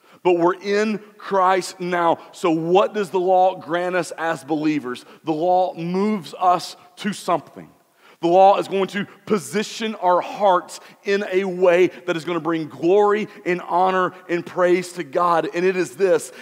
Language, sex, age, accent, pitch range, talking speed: English, male, 40-59, American, 165-195 Hz, 170 wpm